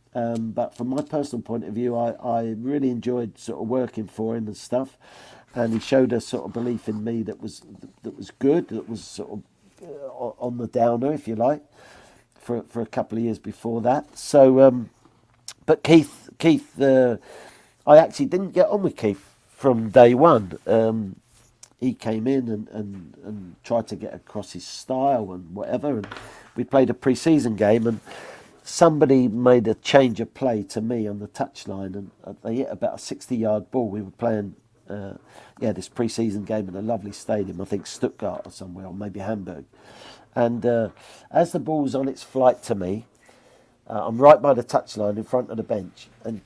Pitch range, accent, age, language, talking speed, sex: 110-130 Hz, British, 50-69, English, 195 wpm, male